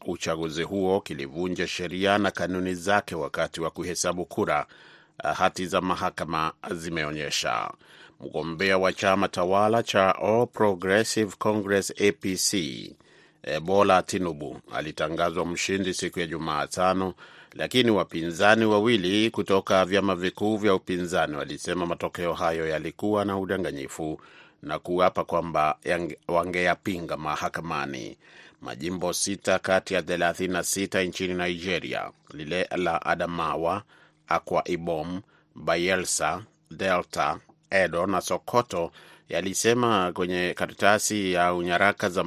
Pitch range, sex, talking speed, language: 90-100 Hz, male, 105 wpm, Swahili